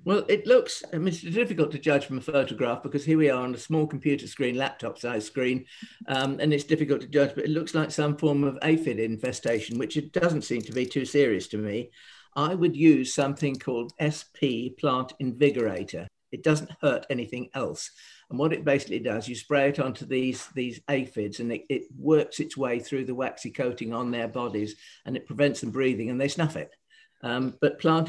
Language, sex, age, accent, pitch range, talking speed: English, male, 50-69, British, 130-160 Hz, 210 wpm